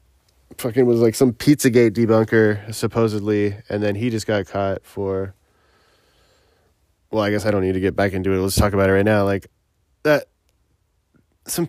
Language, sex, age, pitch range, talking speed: English, male, 20-39, 100-130 Hz, 175 wpm